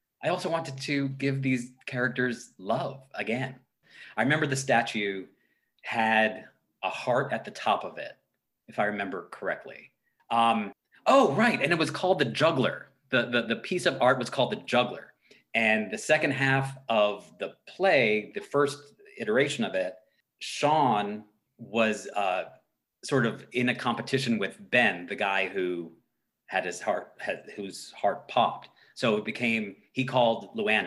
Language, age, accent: English, 30-49, American